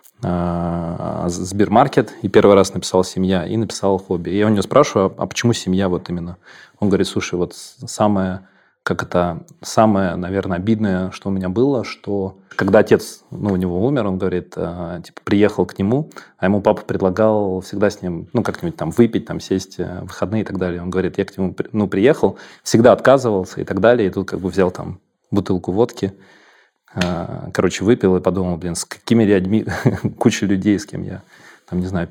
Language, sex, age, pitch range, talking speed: Russian, male, 30-49, 95-105 Hz, 185 wpm